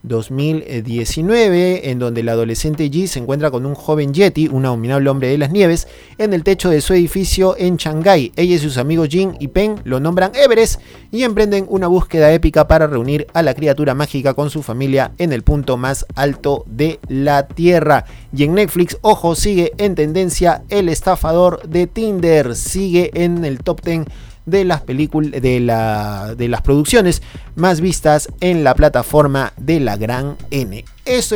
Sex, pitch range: male, 140-185 Hz